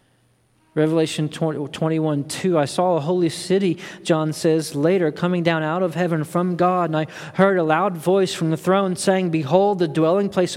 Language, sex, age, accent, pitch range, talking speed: English, male, 40-59, American, 145-180 Hz, 185 wpm